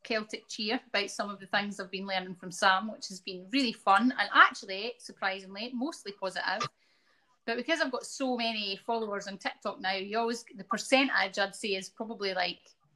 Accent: British